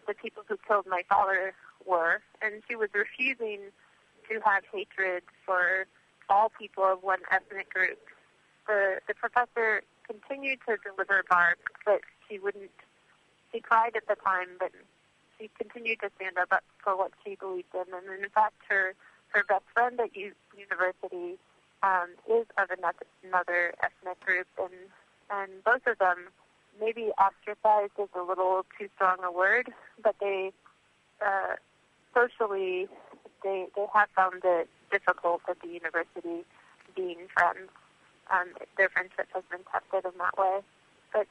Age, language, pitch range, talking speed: 30-49, English, 185-220 Hz, 150 wpm